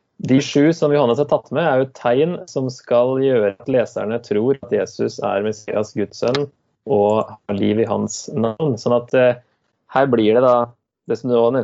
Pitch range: 105-130 Hz